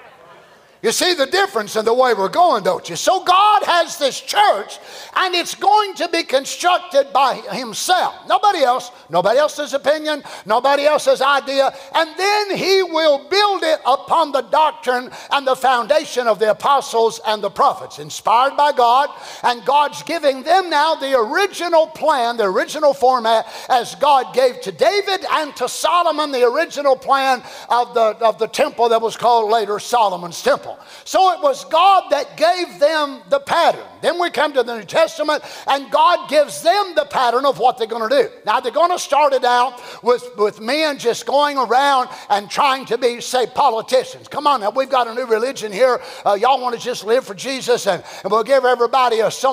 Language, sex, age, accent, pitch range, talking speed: English, male, 50-69, American, 245-320 Hz, 190 wpm